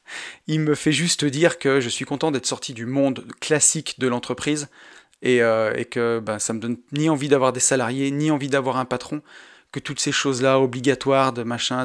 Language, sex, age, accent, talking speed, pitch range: French, male, 30-49, French, 215 wpm, 125-155 Hz